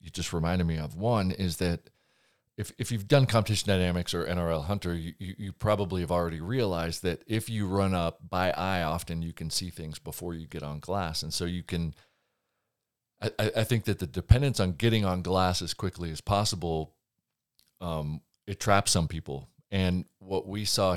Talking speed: 195 wpm